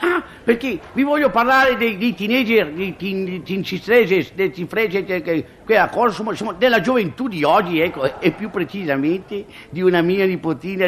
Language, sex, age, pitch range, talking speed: Italian, male, 50-69, 185-255 Hz, 130 wpm